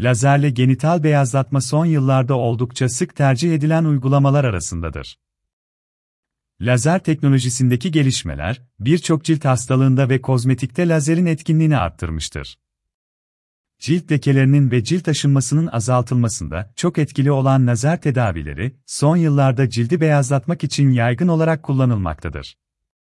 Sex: male